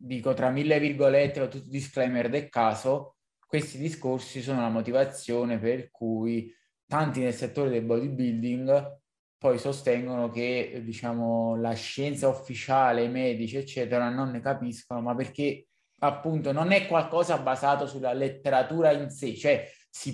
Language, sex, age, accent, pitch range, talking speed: Italian, male, 20-39, native, 125-155 Hz, 140 wpm